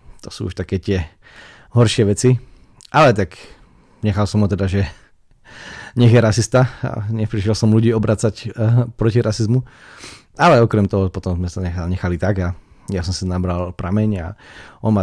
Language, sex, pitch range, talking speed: Slovak, male, 90-105 Hz, 170 wpm